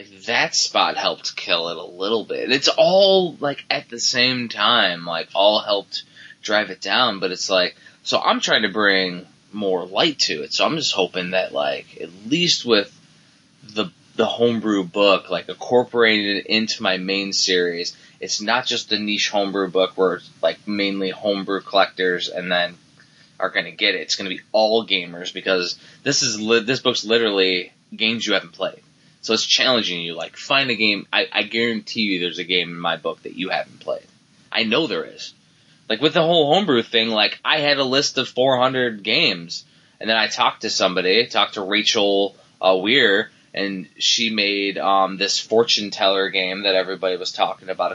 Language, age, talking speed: English, 20-39, 190 wpm